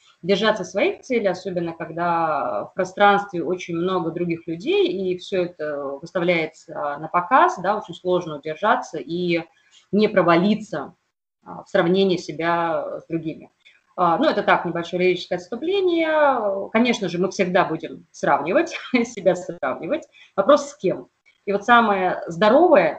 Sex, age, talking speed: female, 20-39, 130 wpm